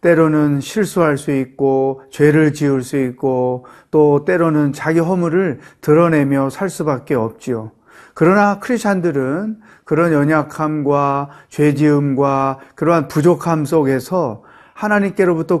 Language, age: Korean, 40-59